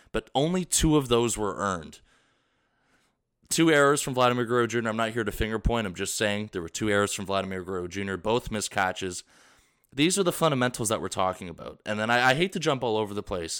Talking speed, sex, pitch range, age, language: 230 wpm, male, 100-125 Hz, 20-39, English